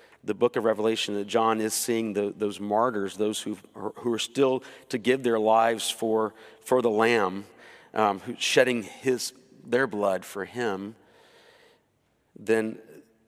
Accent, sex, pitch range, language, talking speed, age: American, male, 105-125 Hz, English, 145 wpm, 50-69